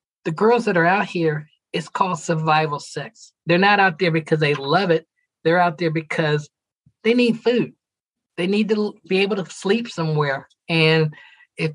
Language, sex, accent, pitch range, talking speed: English, male, American, 155-185 Hz, 180 wpm